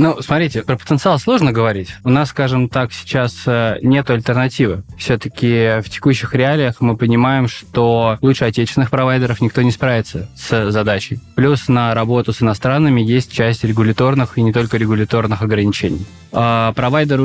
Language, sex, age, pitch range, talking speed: Russian, male, 20-39, 115-145 Hz, 150 wpm